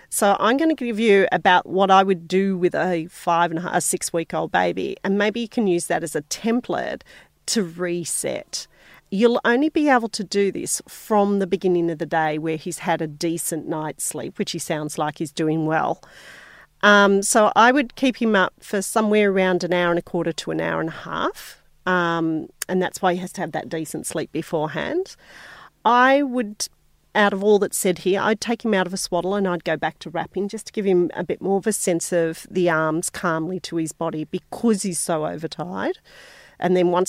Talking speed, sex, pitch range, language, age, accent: 220 wpm, female, 165-205 Hz, English, 40-59, Australian